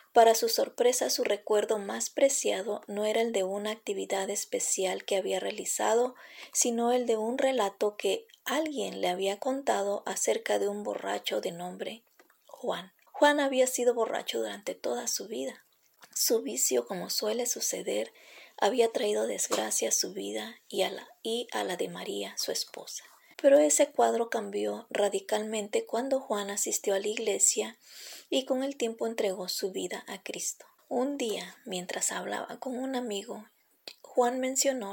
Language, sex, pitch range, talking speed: Spanish, female, 210-275 Hz, 155 wpm